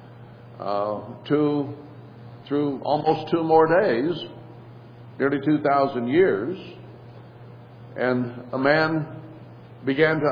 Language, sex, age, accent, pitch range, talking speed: English, male, 60-79, American, 120-140 Hz, 95 wpm